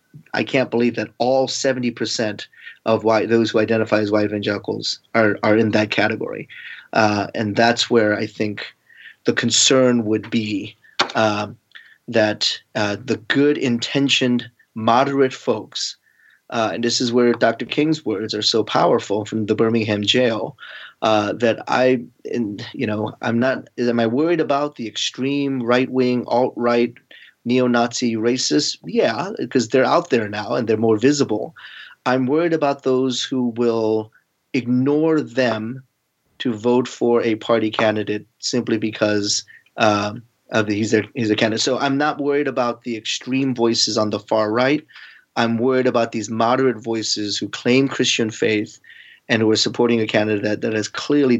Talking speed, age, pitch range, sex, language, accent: 160 wpm, 30-49, 110-130 Hz, male, English, American